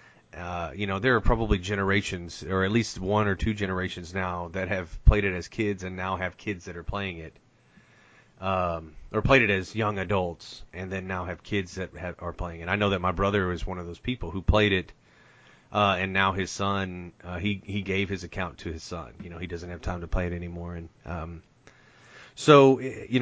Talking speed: 225 wpm